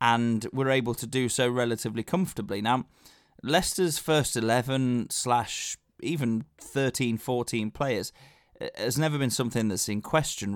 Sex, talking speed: male, 135 wpm